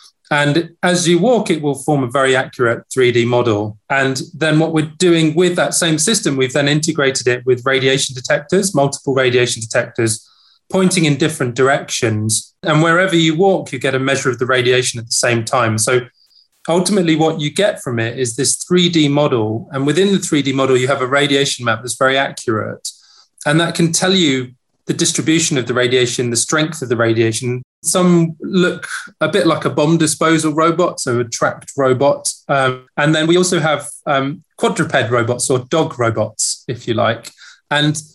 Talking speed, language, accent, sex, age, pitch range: 185 wpm, English, British, male, 30-49, 125-160 Hz